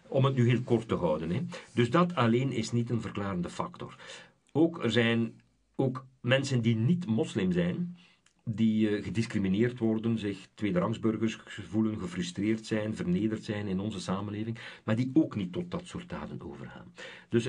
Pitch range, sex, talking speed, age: 105-135 Hz, male, 170 wpm, 50-69